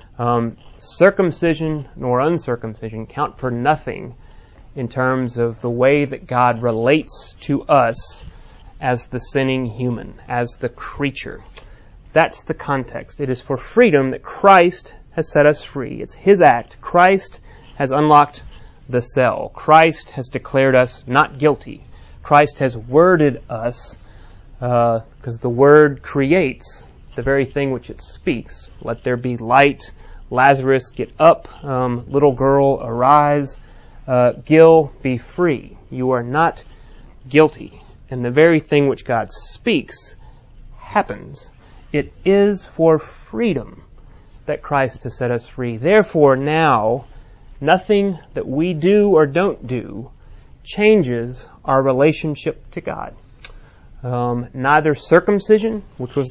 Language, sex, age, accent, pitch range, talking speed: English, male, 30-49, American, 120-155 Hz, 130 wpm